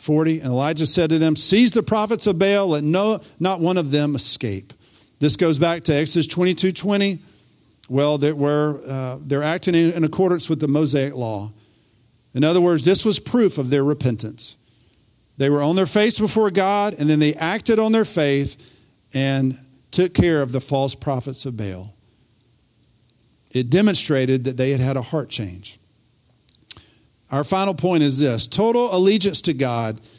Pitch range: 125-195 Hz